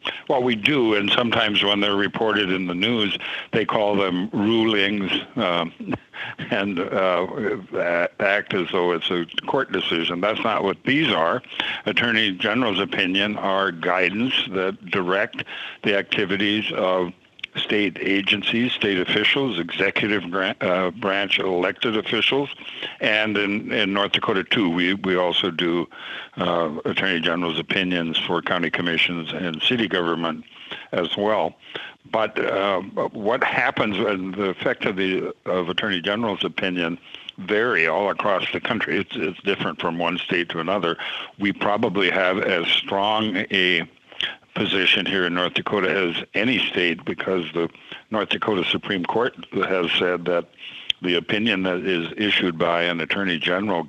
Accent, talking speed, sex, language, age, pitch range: American, 145 wpm, male, English, 60-79, 85-105 Hz